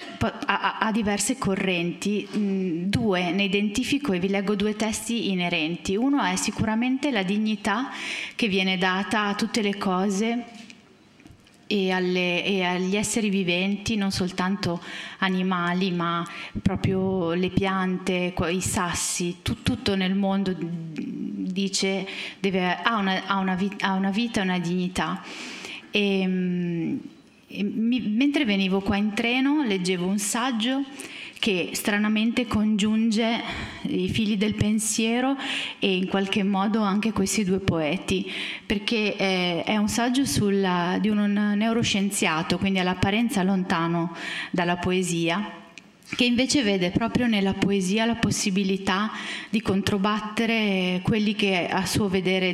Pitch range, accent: 185-220 Hz, native